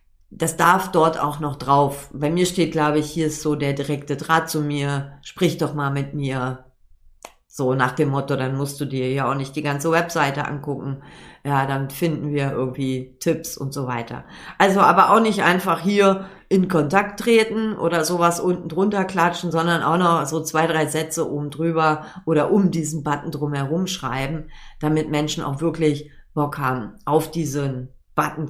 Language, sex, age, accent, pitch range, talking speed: German, female, 40-59, German, 140-170 Hz, 180 wpm